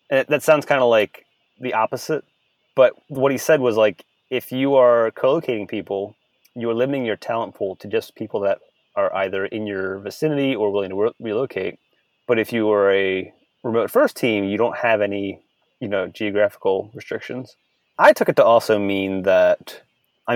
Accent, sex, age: American, male, 30-49